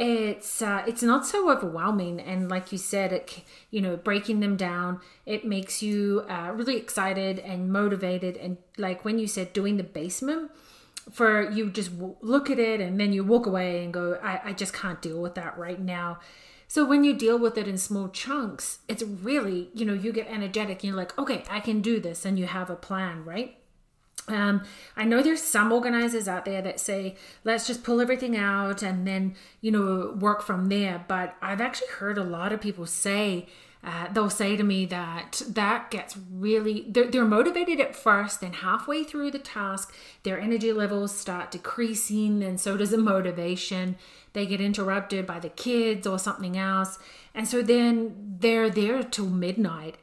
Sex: female